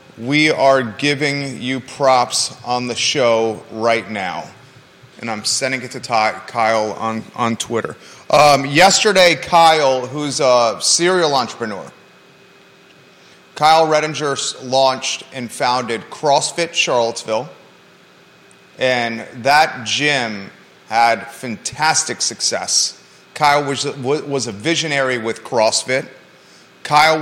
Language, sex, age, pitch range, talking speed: English, male, 30-49, 130-155 Hz, 105 wpm